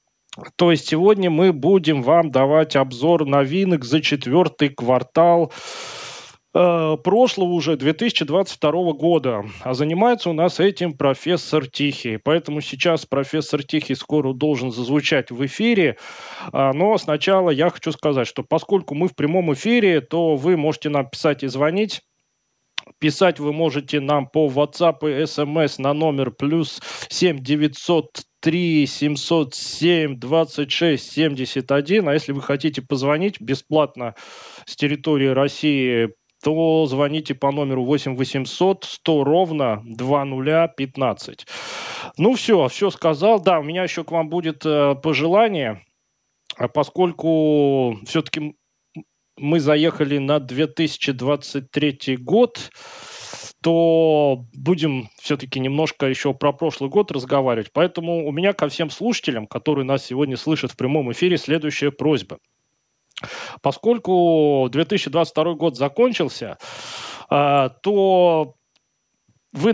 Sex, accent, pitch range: male, native, 140-170 Hz